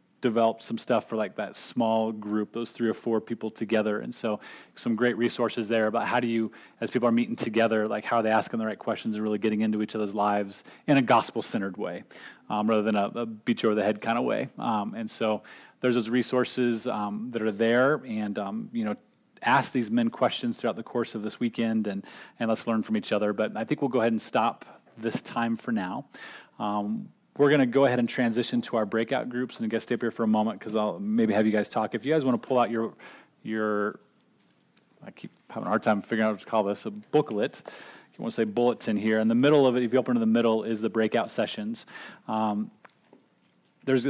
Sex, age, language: male, 30-49, English